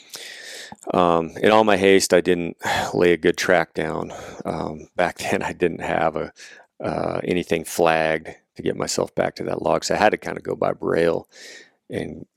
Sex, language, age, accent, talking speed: male, English, 40-59, American, 190 wpm